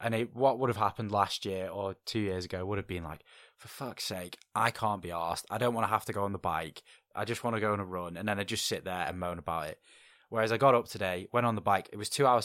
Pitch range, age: 95-120 Hz, 10-29